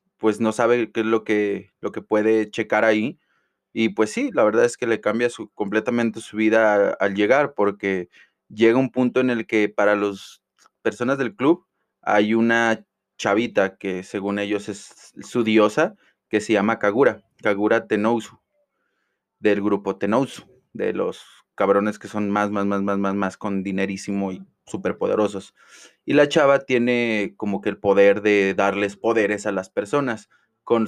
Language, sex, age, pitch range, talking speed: Spanish, male, 20-39, 100-115 Hz, 165 wpm